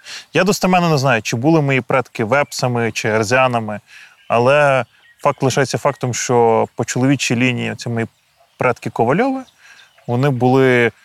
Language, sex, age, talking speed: Ukrainian, male, 20-39, 135 wpm